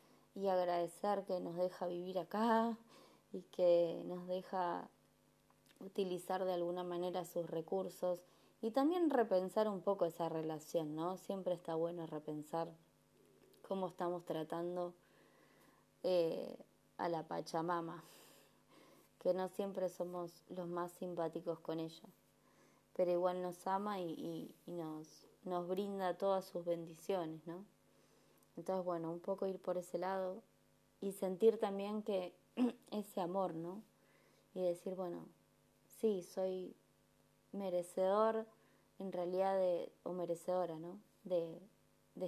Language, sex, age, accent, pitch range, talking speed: Spanish, female, 20-39, Argentinian, 175-205 Hz, 125 wpm